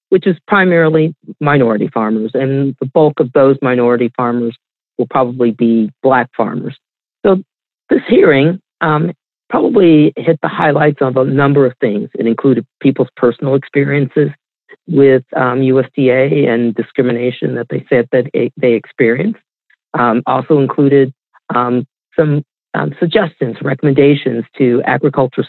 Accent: American